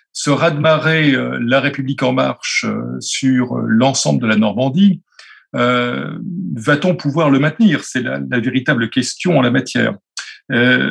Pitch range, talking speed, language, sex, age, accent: 130-175 Hz, 140 wpm, French, male, 40-59, French